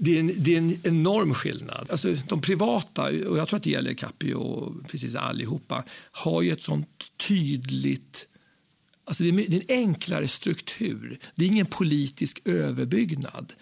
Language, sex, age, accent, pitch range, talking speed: Swedish, male, 60-79, native, 165-225 Hz, 165 wpm